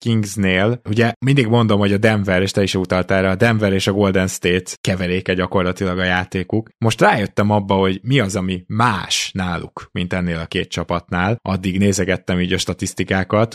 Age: 20-39